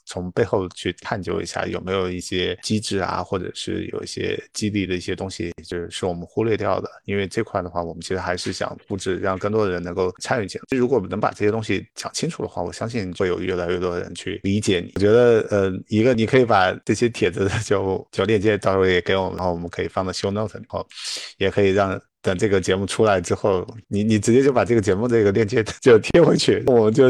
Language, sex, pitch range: Chinese, male, 90-110 Hz